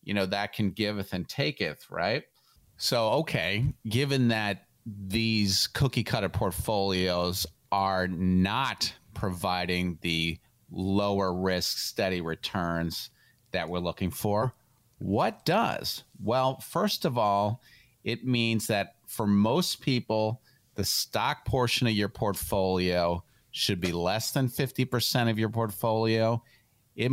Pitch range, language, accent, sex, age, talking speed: 95-120 Hz, English, American, male, 40-59, 115 wpm